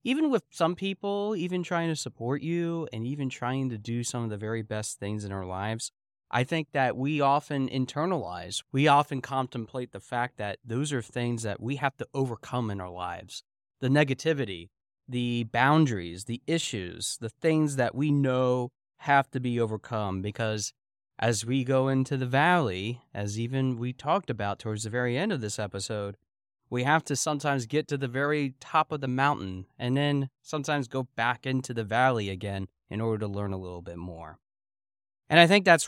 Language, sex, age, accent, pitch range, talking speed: English, male, 30-49, American, 115-140 Hz, 190 wpm